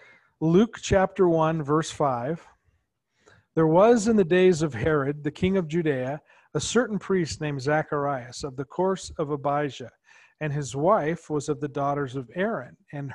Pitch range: 145-175 Hz